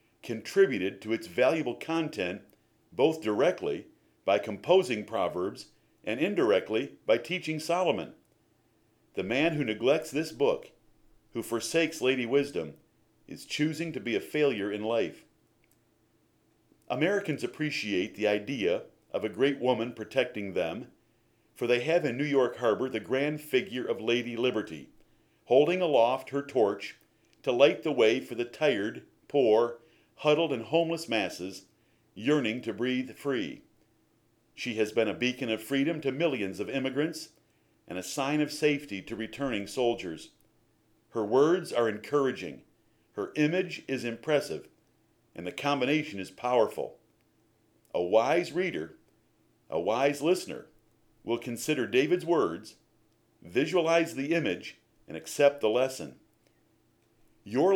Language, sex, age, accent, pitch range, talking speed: English, male, 50-69, American, 110-150 Hz, 130 wpm